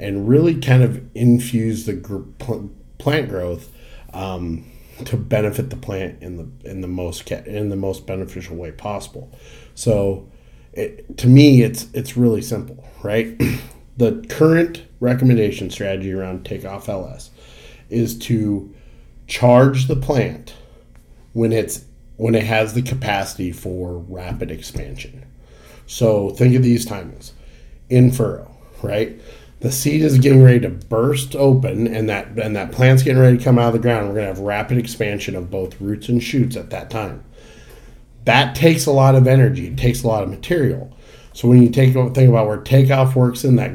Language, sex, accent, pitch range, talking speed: English, male, American, 100-130 Hz, 170 wpm